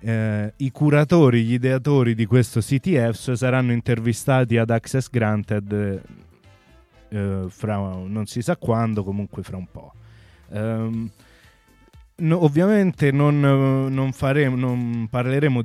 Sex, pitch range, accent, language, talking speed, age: male, 105-130 Hz, native, Italian, 120 wpm, 20-39